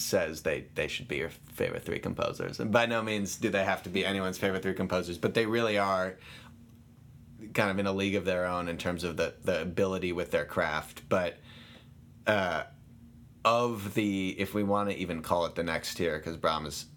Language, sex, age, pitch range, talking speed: English, male, 30-49, 90-115 Hz, 210 wpm